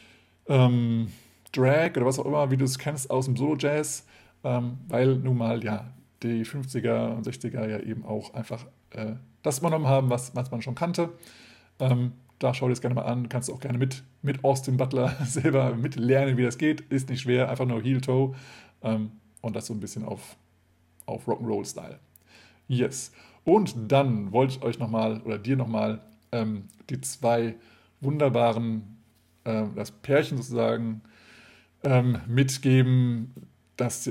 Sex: male